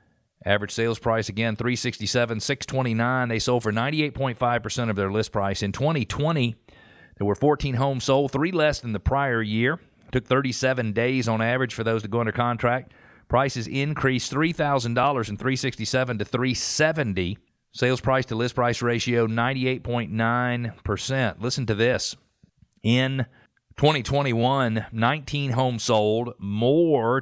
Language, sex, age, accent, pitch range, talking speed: English, male, 40-59, American, 110-130 Hz, 180 wpm